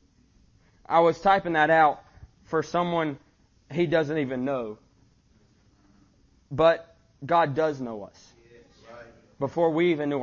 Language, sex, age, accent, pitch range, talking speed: English, male, 20-39, American, 120-165 Hz, 115 wpm